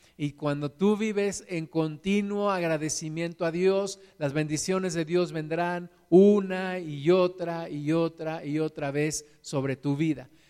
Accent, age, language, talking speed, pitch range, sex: Mexican, 50-69, Spanish, 145 wpm, 165-215 Hz, male